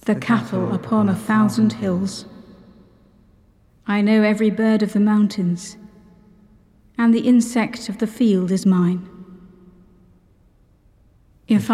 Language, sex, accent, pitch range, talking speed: English, female, British, 190-220 Hz, 110 wpm